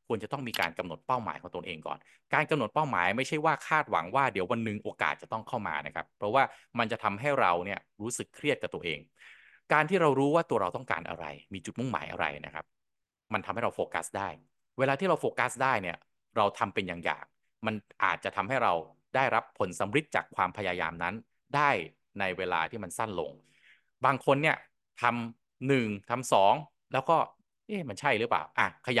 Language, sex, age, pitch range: Thai, male, 20-39, 90-135 Hz